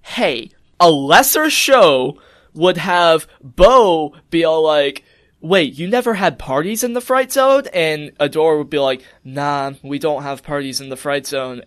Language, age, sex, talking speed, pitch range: English, 20-39, male, 170 wpm, 145-215 Hz